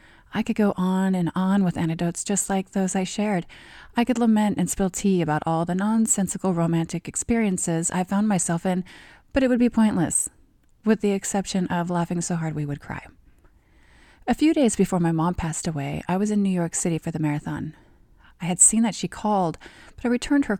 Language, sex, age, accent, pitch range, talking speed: English, female, 30-49, American, 165-205 Hz, 205 wpm